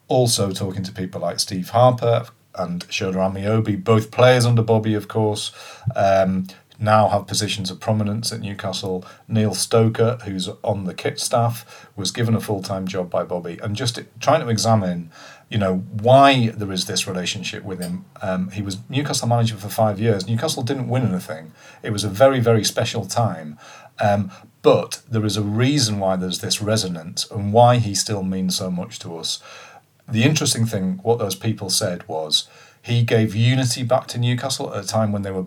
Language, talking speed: English, 185 wpm